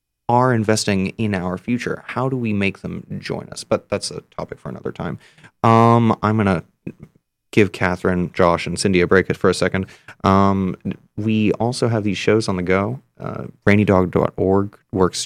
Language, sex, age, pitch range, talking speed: English, male, 30-49, 90-110 Hz, 175 wpm